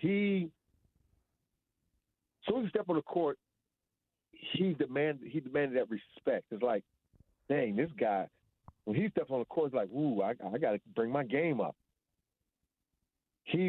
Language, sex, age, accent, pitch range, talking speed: English, male, 50-69, American, 100-150 Hz, 165 wpm